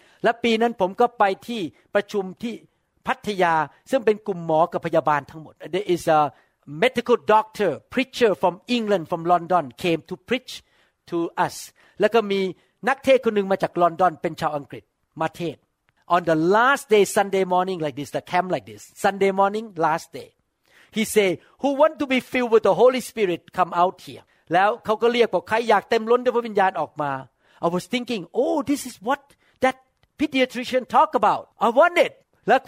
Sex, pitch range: male, 175-250 Hz